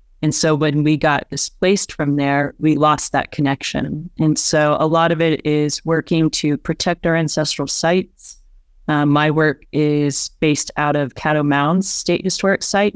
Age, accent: 30-49, American